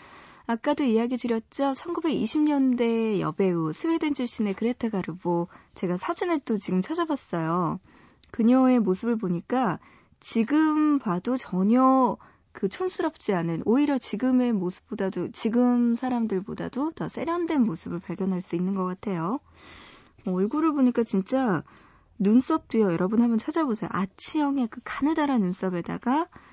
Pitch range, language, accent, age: 185-265 Hz, Korean, native, 20-39